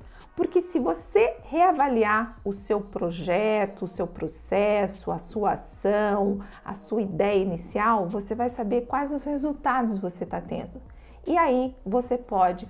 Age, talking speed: 40-59, 140 wpm